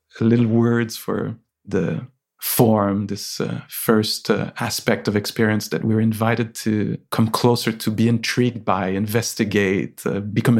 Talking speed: 140 wpm